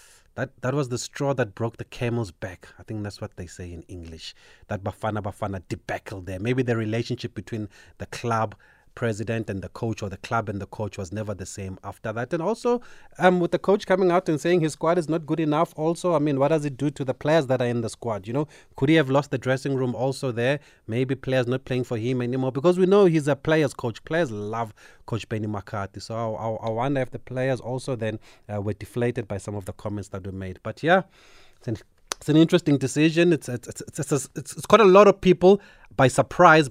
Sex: male